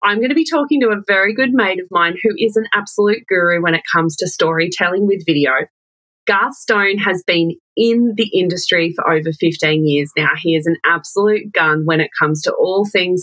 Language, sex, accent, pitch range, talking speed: English, female, Australian, 165-215 Hz, 215 wpm